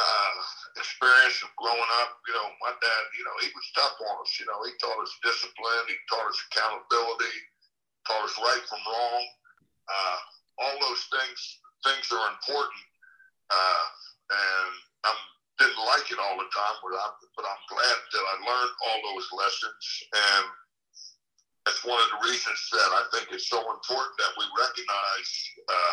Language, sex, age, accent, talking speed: English, male, 60-79, American, 170 wpm